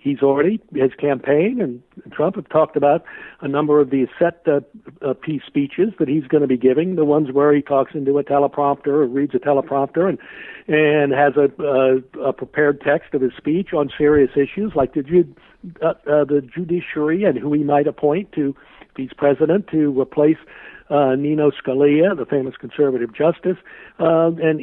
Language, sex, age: English, male, 60-79